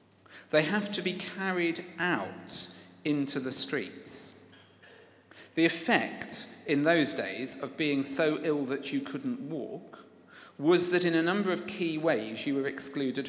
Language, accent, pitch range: English, British, 135-205 Hz